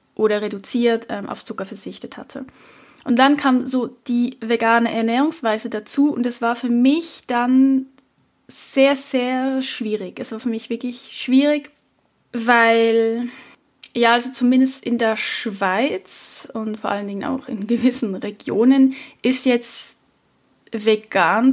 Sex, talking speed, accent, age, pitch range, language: female, 130 wpm, German, 10-29, 230-265 Hz, German